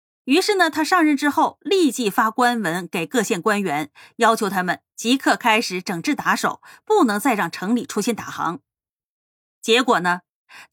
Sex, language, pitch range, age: female, Chinese, 205-300 Hz, 20-39